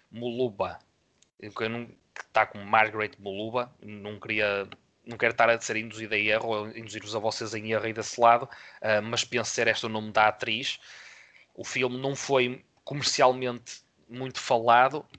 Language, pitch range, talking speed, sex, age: Portuguese, 110-130 Hz, 175 wpm, male, 20-39